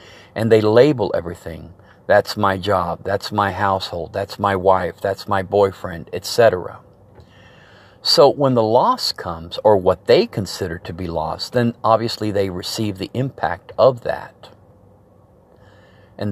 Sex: male